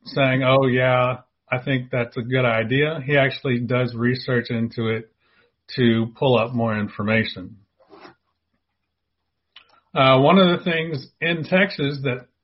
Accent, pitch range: American, 120-150 Hz